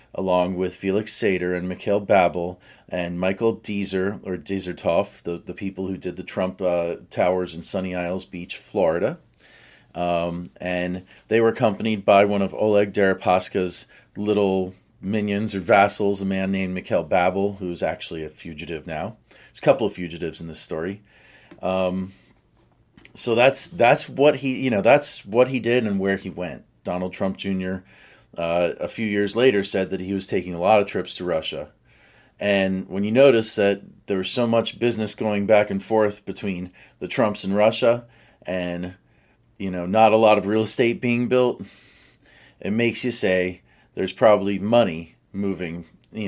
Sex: male